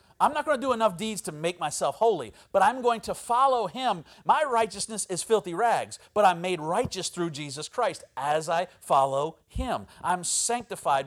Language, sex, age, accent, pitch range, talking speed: English, male, 40-59, American, 150-220 Hz, 190 wpm